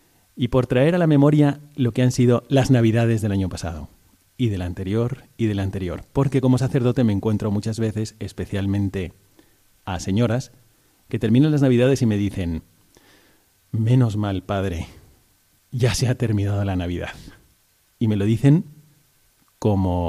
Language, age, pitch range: Spanish, 40-59, 95-120 Hz